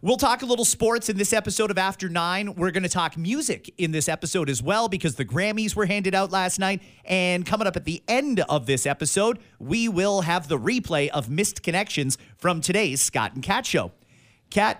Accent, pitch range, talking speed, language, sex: American, 135-210 Hz, 215 wpm, English, male